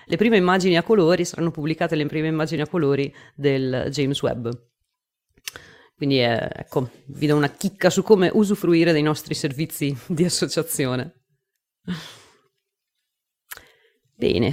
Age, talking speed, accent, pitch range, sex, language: 30-49, 130 wpm, native, 140-180 Hz, female, Italian